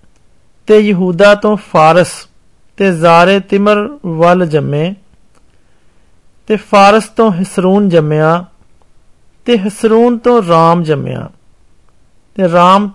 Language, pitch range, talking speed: Hindi, 165-210 Hz, 85 wpm